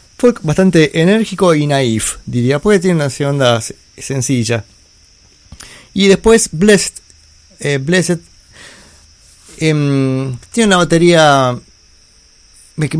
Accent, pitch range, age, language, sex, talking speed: Argentinian, 120-150 Hz, 30-49, Spanish, male, 95 wpm